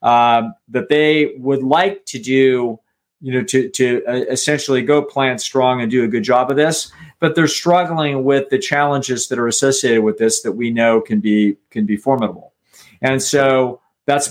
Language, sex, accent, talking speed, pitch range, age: English, male, American, 190 wpm, 130-150 Hz, 50-69